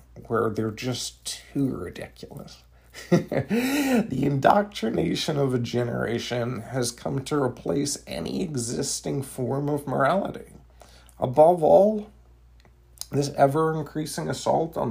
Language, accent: English, American